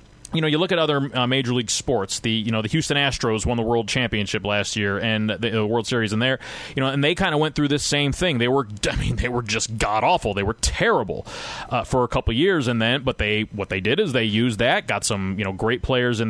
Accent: American